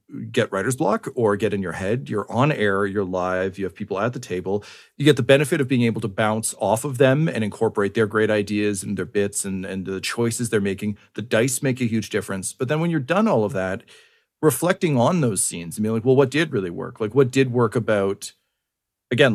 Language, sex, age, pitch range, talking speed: English, male, 40-59, 105-130 Hz, 240 wpm